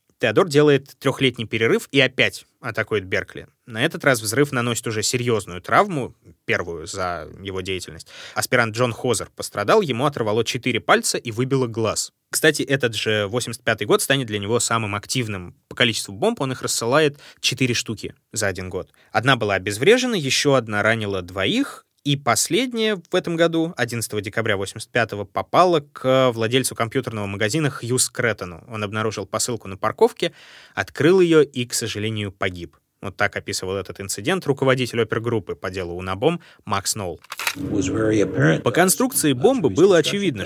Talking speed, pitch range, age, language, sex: 155 wpm, 105-135 Hz, 20-39, Russian, male